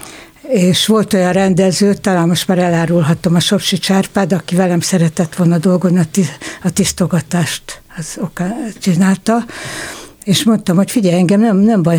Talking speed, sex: 150 wpm, female